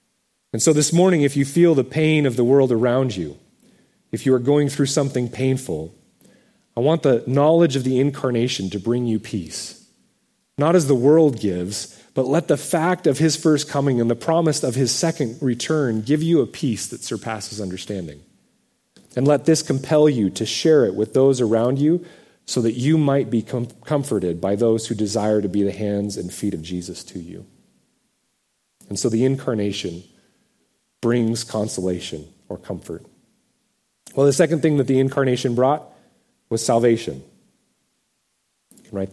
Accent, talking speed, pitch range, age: American, 170 wpm, 105-145 Hz, 30-49